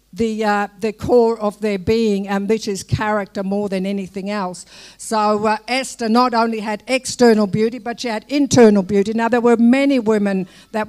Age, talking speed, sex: 60-79, 185 wpm, female